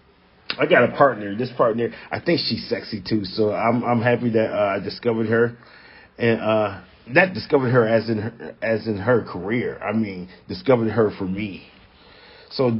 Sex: male